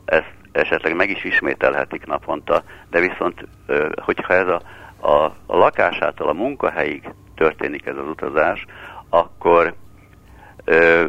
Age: 60-79